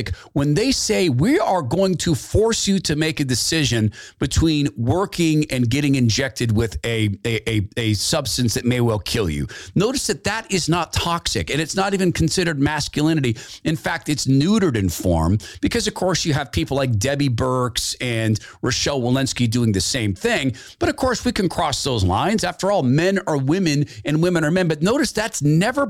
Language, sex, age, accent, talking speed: English, male, 40-59, American, 190 wpm